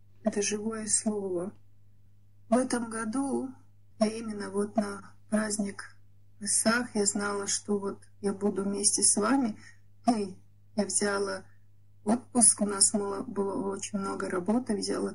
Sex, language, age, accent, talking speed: female, Russian, 20-39, native, 135 wpm